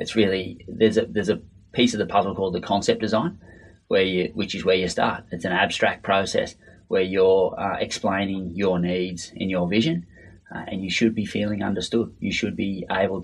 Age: 30-49